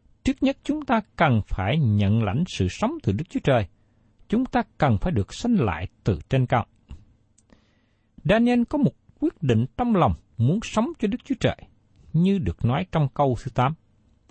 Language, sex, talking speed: Vietnamese, male, 185 wpm